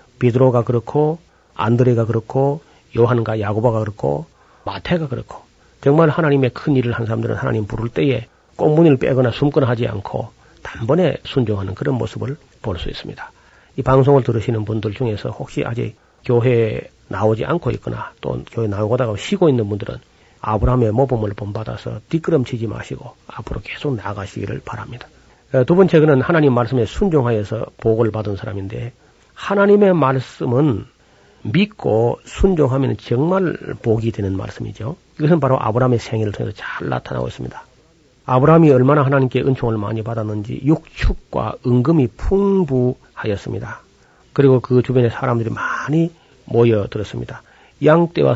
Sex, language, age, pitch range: male, Korean, 40-59, 115-140 Hz